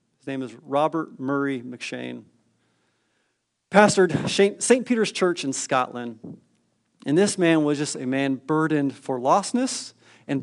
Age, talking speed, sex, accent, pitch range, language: 40-59, 125 wpm, male, American, 135-205 Hz, English